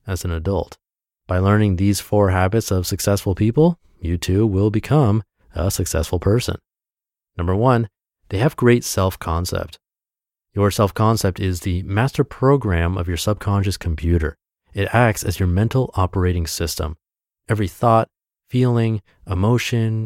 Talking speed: 140 wpm